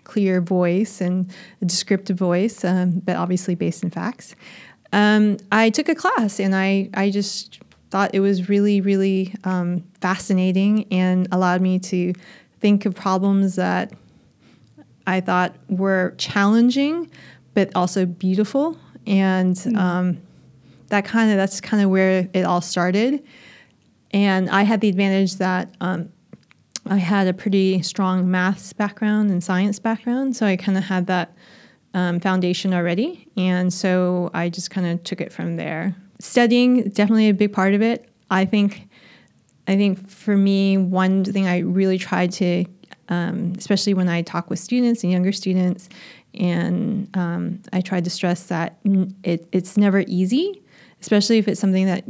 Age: 30-49